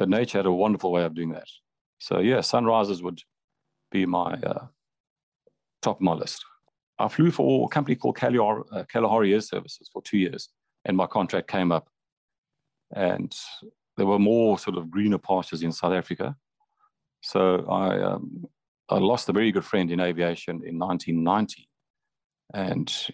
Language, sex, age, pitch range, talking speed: English, male, 40-59, 85-100 Hz, 160 wpm